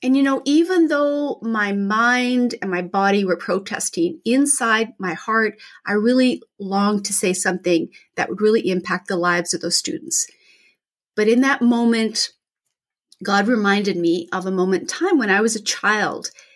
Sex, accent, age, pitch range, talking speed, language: female, American, 30-49, 185-235 Hz, 170 wpm, English